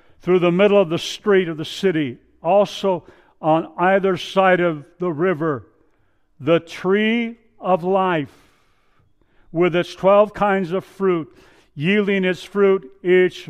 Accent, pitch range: American, 145-185 Hz